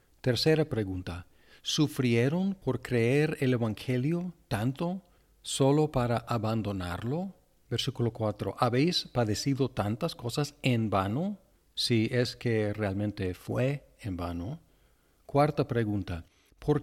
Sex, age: male, 50-69